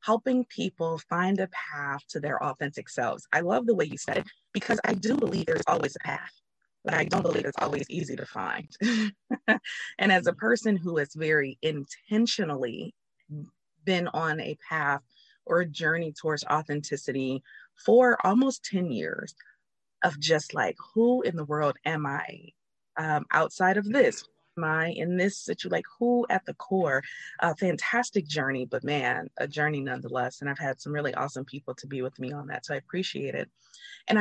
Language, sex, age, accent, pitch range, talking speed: English, female, 20-39, American, 150-215 Hz, 180 wpm